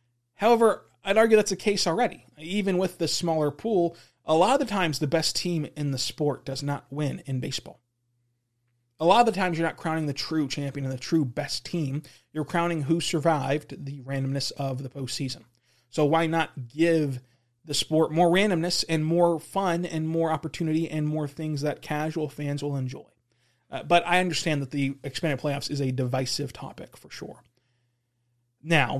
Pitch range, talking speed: 130-165 Hz, 185 wpm